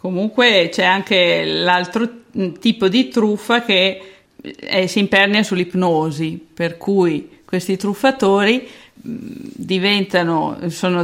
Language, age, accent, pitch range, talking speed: Italian, 50-69, native, 175-220 Hz, 110 wpm